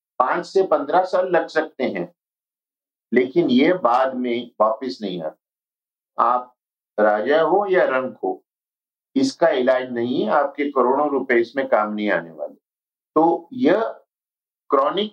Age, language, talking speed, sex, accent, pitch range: 50-69, Hindi, 140 wpm, male, native, 125-185 Hz